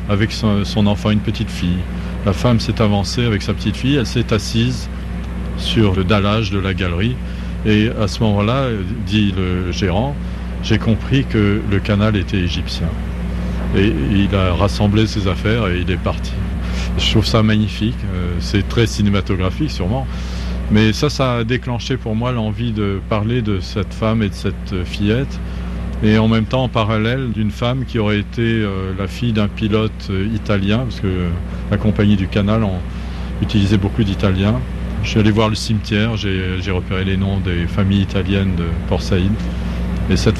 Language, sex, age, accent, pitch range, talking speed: French, male, 40-59, French, 90-110 Hz, 180 wpm